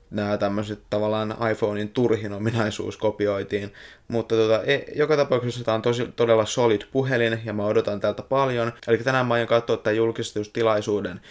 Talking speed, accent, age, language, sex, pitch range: 150 wpm, native, 20-39, Finnish, male, 105-120 Hz